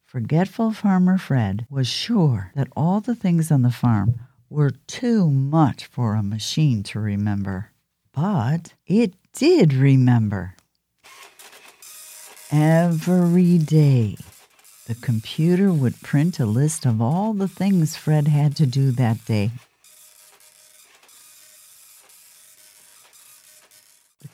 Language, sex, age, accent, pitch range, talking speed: English, female, 50-69, American, 120-165 Hz, 105 wpm